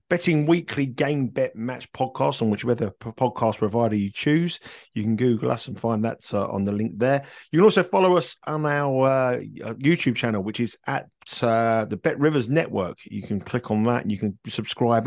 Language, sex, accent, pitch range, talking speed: English, male, British, 105-135 Hz, 205 wpm